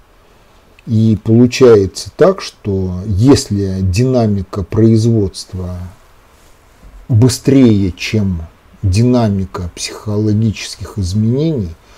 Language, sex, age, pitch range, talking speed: Russian, male, 50-69, 95-125 Hz, 60 wpm